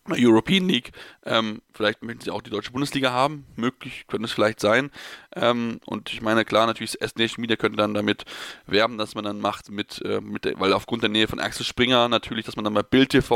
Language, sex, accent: German, male, German